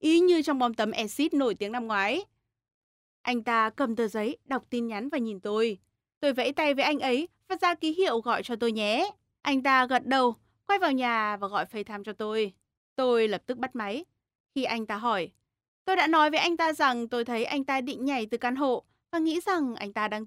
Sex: female